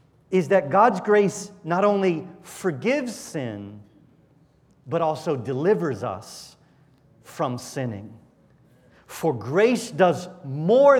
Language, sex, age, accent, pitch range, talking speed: English, male, 40-59, American, 130-175 Hz, 100 wpm